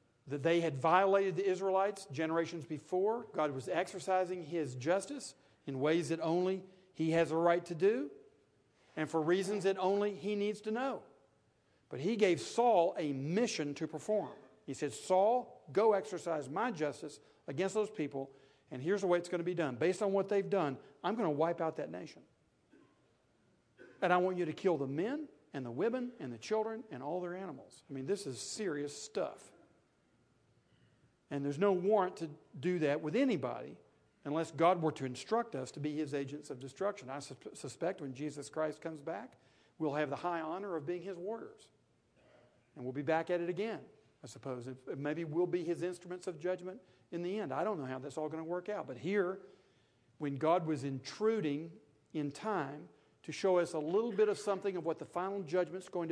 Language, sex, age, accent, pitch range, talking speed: English, male, 50-69, American, 150-195 Hz, 195 wpm